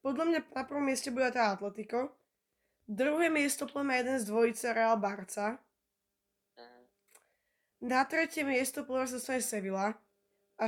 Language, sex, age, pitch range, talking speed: Slovak, female, 10-29, 215-265 Hz, 130 wpm